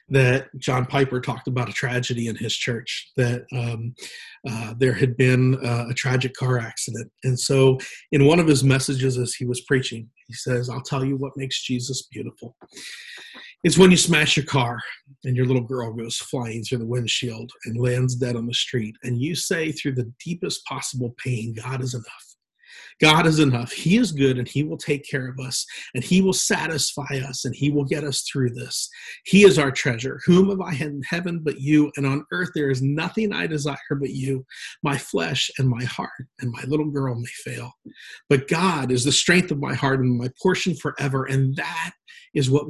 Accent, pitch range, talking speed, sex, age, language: American, 125-150 Hz, 205 wpm, male, 40-59, English